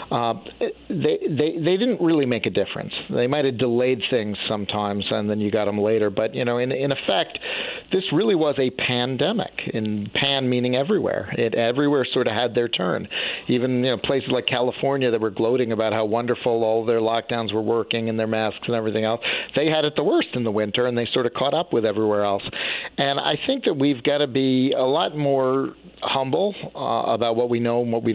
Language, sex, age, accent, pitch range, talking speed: English, male, 50-69, American, 115-145 Hz, 225 wpm